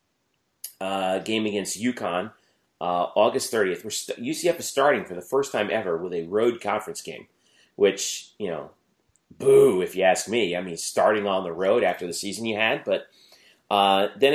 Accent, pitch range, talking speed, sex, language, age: American, 95-125 Hz, 185 wpm, male, English, 30-49